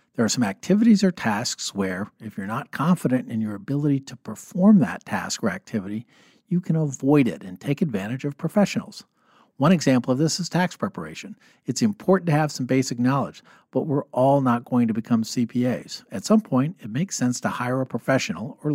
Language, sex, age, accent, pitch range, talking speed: English, male, 50-69, American, 125-185 Hz, 200 wpm